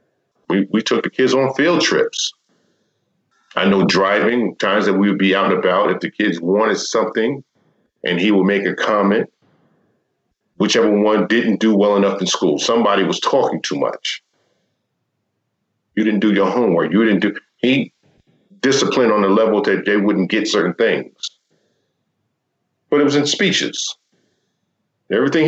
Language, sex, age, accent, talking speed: English, male, 50-69, American, 160 wpm